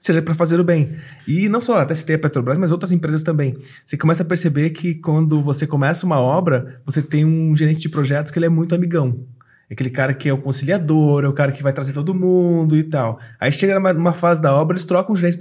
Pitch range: 155-185 Hz